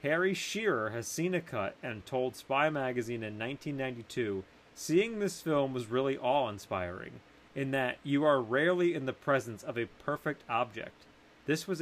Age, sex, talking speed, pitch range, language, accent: 30-49, male, 160 wpm, 125-170 Hz, English, American